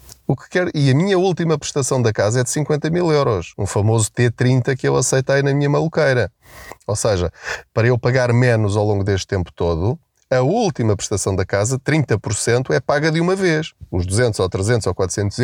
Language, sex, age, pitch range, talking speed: Portuguese, male, 20-39, 115-185 Hz, 190 wpm